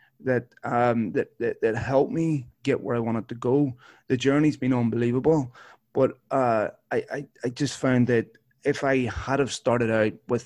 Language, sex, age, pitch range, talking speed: English, male, 20-39, 120-135 Hz, 185 wpm